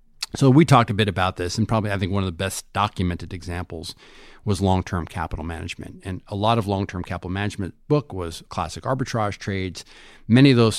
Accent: American